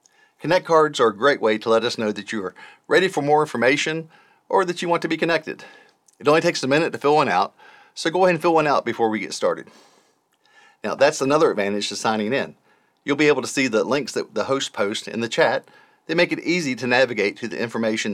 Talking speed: 245 wpm